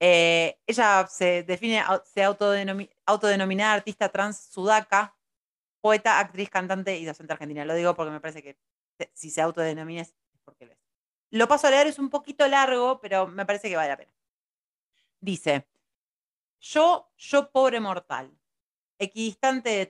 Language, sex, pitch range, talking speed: Spanish, female, 160-215 Hz, 155 wpm